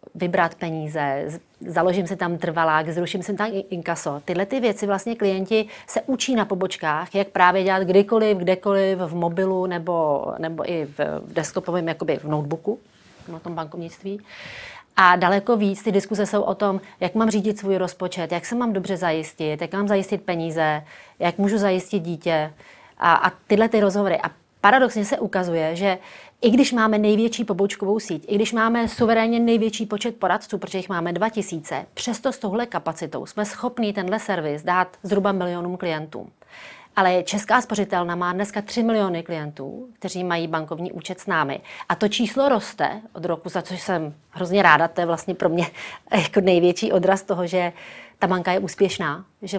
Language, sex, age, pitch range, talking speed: Czech, female, 30-49, 170-205 Hz, 170 wpm